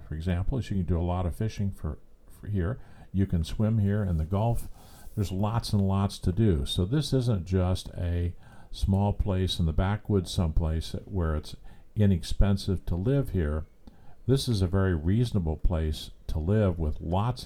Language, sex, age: English, male, 50-69